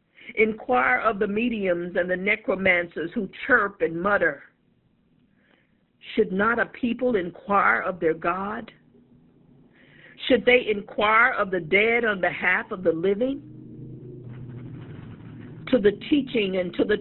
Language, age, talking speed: English, 50-69, 125 wpm